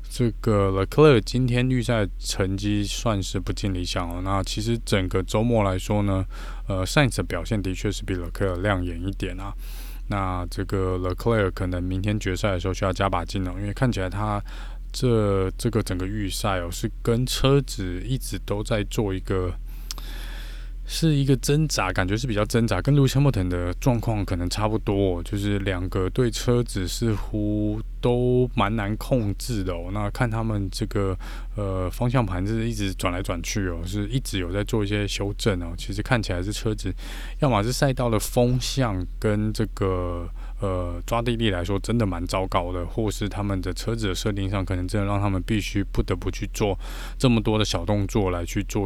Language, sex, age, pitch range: Chinese, male, 20-39, 95-115 Hz